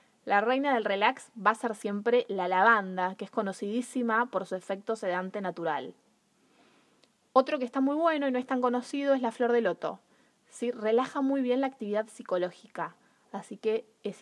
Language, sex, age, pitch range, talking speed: Spanish, female, 20-39, 185-250 Hz, 175 wpm